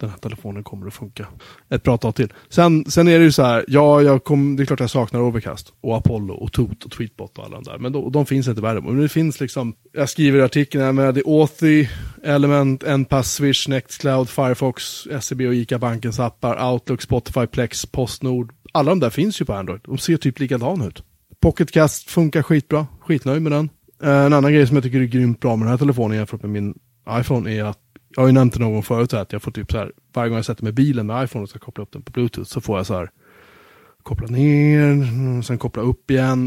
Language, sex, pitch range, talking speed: Swedish, male, 115-140 Hz, 230 wpm